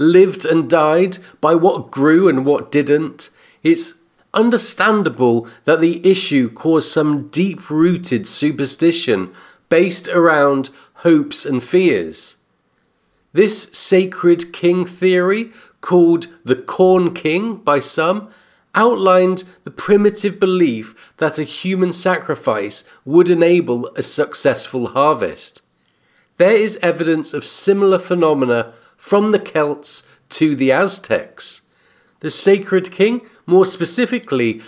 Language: English